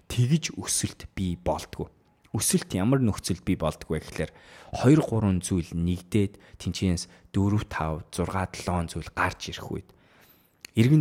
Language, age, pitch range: English, 20-39, 85-110 Hz